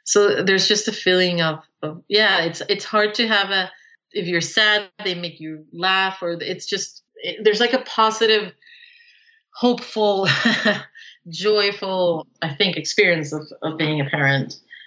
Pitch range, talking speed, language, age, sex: 145-200 Hz, 155 wpm, English, 30-49, female